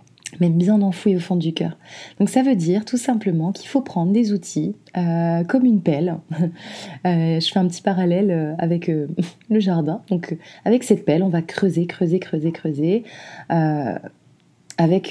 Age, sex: 20-39, female